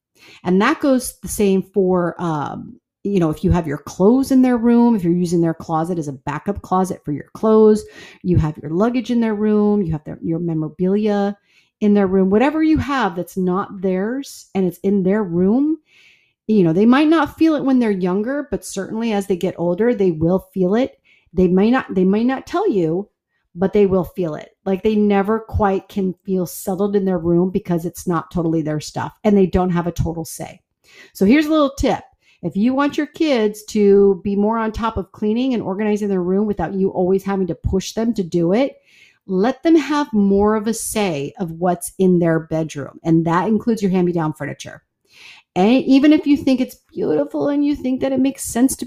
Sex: female